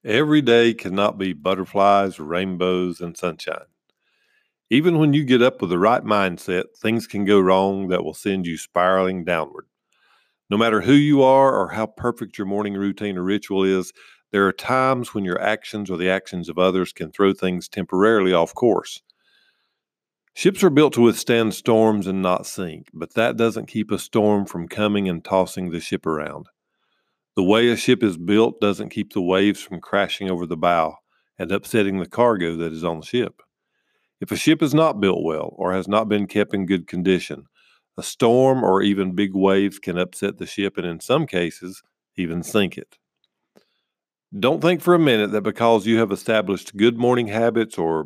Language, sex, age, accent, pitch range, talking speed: English, male, 50-69, American, 95-115 Hz, 185 wpm